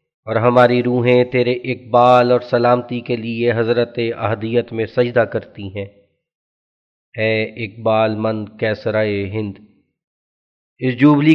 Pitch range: 110-125 Hz